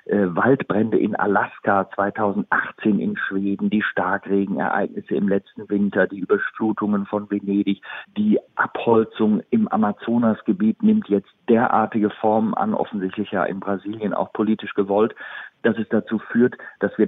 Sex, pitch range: male, 105-150 Hz